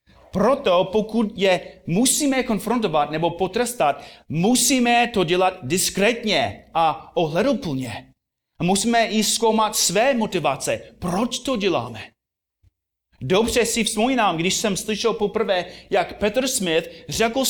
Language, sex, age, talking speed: Czech, male, 30-49, 110 wpm